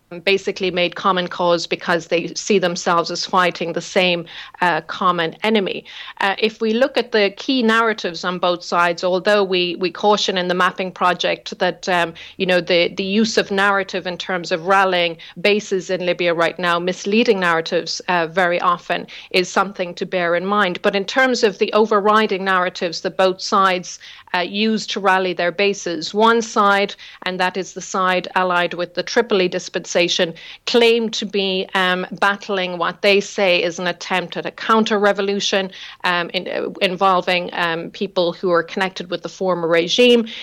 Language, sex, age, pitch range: English, female, 40-59, 175-200 Hz